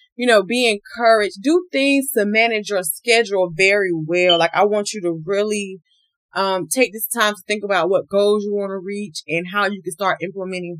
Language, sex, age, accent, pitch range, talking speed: English, female, 20-39, American, 170-225 Hz, 205 wpm